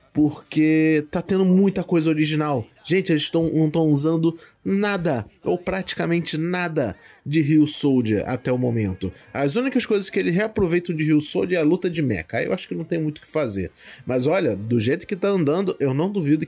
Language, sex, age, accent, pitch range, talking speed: Portuguese, male, 20-39, Brazilian, 125-175 Hz, 205 wpm